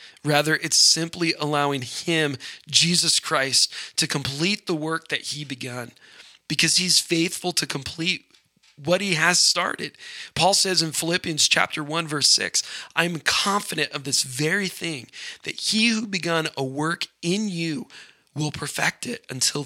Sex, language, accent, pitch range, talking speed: male, English, American, 145-180 Hz, 150 wpm